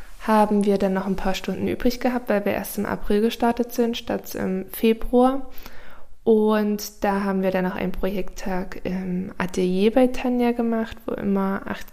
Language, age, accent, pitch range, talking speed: German, 20-39, German, 190-220 Hz, 175 wpm